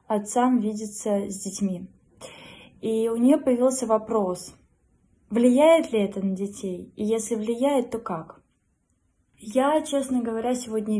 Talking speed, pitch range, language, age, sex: 125 wpm, 205-245 Hz, Russian, 20-39, female